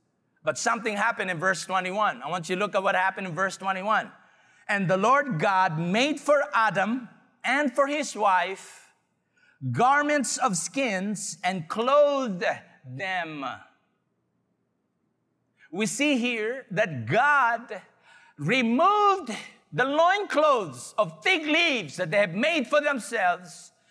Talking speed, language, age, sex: 130 wpm, English, 50-69, male